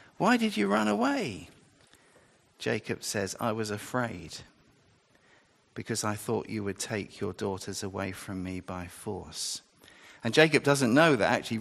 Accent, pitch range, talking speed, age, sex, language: British, 100-130 Hz, 150 wpm, 50-69, male, English